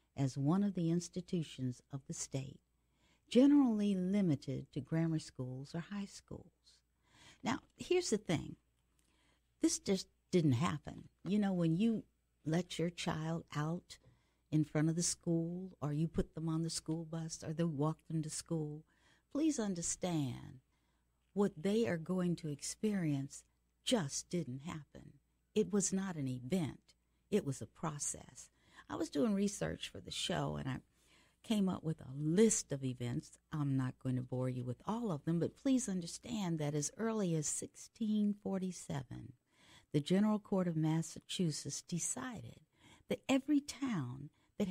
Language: English